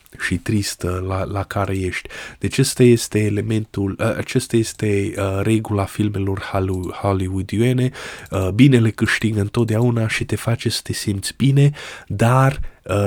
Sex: male